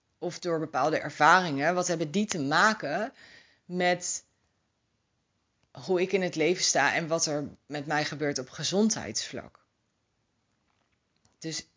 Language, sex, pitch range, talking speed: Dutch, female, 115-165 Hz, 125 wpm